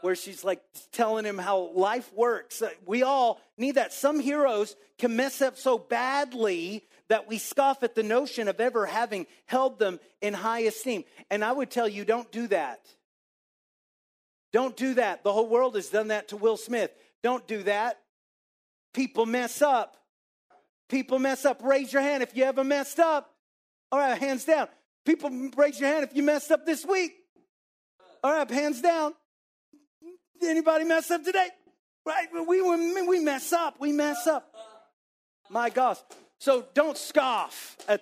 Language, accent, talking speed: English, American, 170 wpm